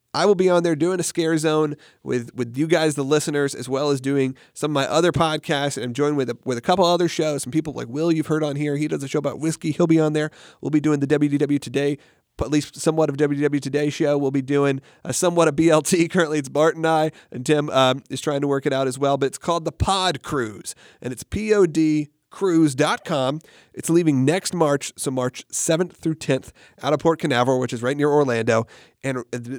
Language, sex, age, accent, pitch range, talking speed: English, male, 40-59, American, 135-160 Hz, 245 wpm